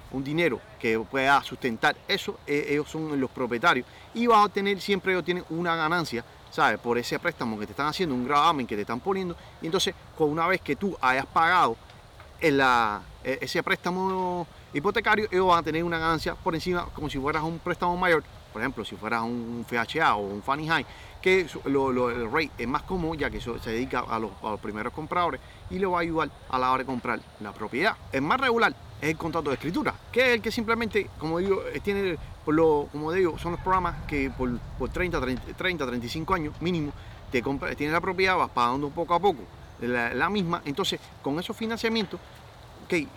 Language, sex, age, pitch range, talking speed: Spanish, male, 30-49, 125-175 Hz, 210 wpm